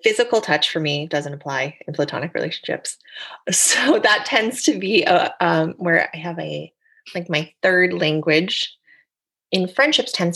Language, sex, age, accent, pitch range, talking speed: English, female, 30-49, American, 165-245 Hz, 150 wpm